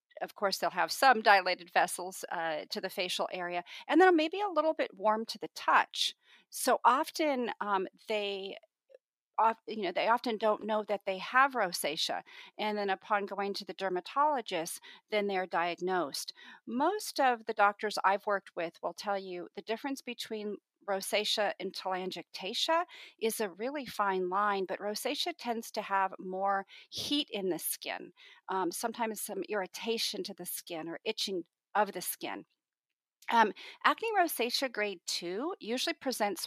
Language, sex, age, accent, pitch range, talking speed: English, female, 40-59, American, 190-245 Hz, 160 wpm